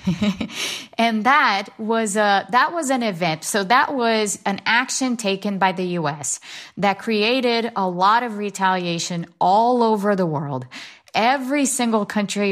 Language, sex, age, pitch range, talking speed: English, female, 30-49, 170-210 Hz, 145 wpm